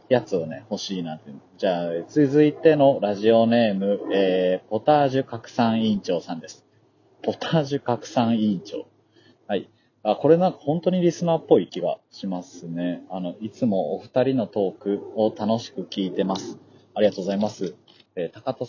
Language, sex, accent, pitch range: Japanese, male, native, 95-135 Hz